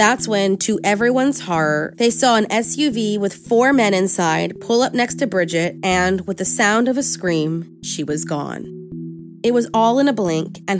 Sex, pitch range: female, 170-230 Hz